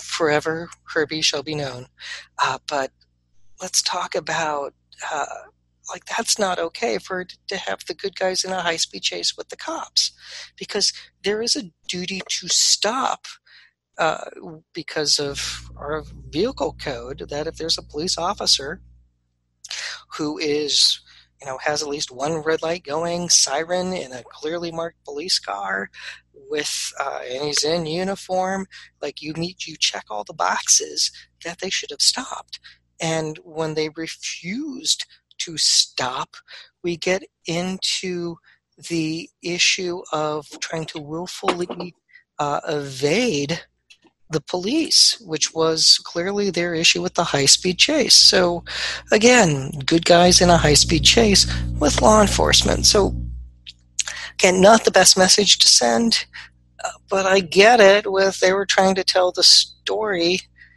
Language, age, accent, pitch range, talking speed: English, 40-59, American, 145-185 Hz, 145 wpm